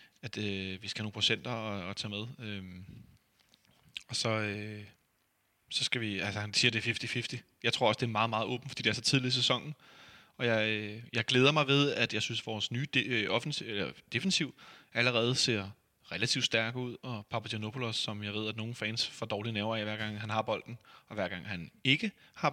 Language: Danish